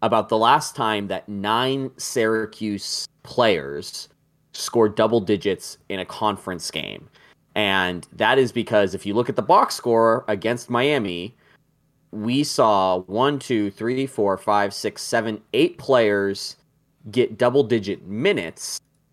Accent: American